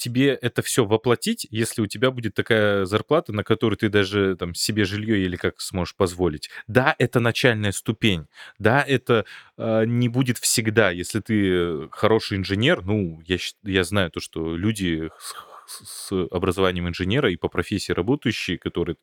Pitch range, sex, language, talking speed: 90-110 Hz, male, Russian, 160 wpm